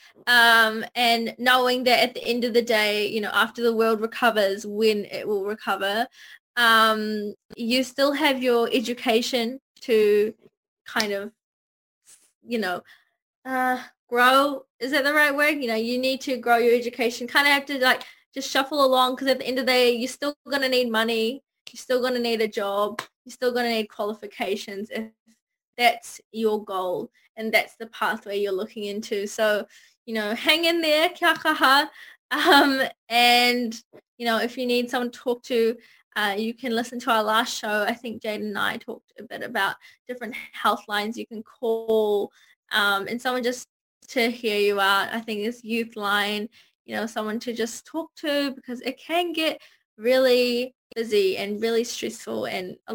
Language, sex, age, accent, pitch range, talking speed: English, female, 10-29, Australian, 220-260 Hz, 185 wpm